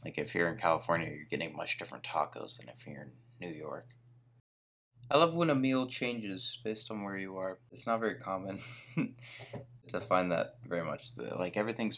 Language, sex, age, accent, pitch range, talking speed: English, male, 20-39, American, 95-125 Hz, 190 wpm